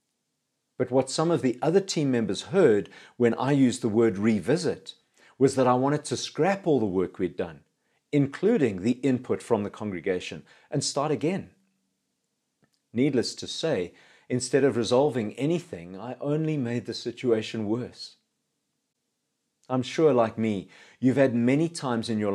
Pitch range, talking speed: 115-145 Hz, 155 wpm